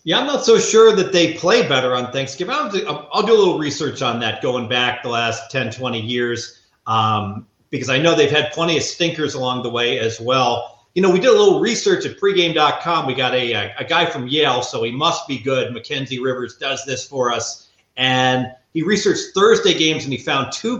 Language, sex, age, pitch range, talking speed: English, male, 40-59, 125-175 Hz, 215 wpm